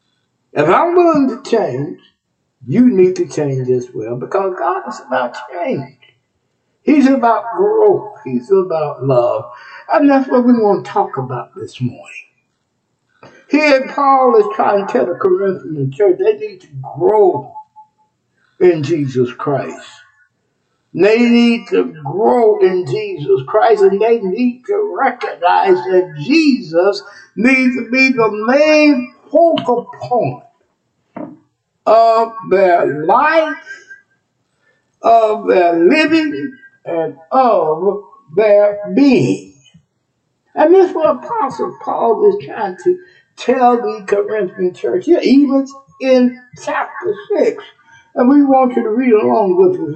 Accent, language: American, English